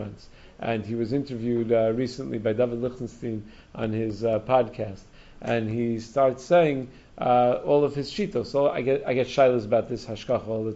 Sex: male